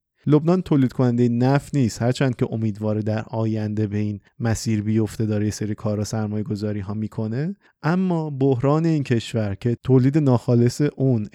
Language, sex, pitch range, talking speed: Persian, male, 110-135 Hz, 165 wpm